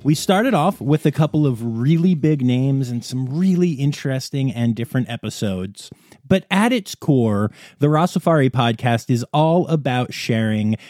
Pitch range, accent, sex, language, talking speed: 120-180 Hz, American, male, English, 155 wpm